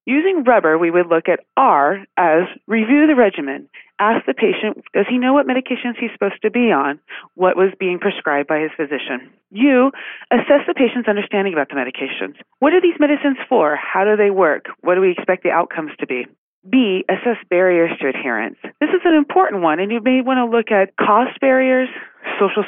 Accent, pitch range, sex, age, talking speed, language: American, 170-240 Hz, female, 30-49, 200 wpm, English